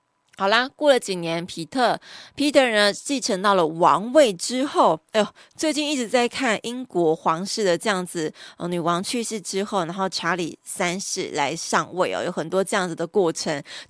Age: 20-39